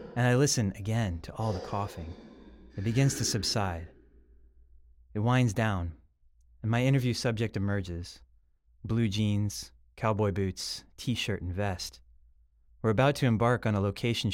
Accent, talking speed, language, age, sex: American, 140 wpm, English, 30-49, male